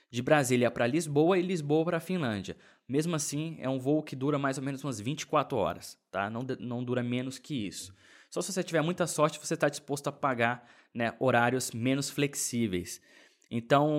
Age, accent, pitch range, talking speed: 20-39, Brazilian, 120-150 Hz, 185 wpm